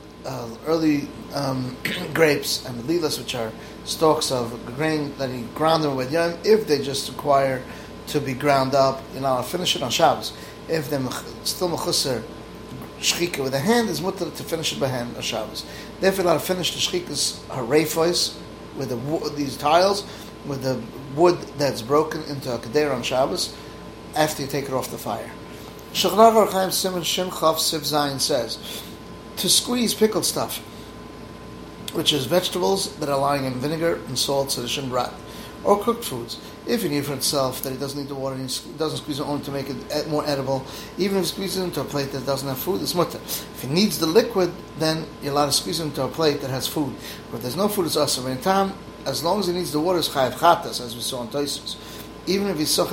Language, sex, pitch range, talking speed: English, male, 130-170 Hz, 200 wpm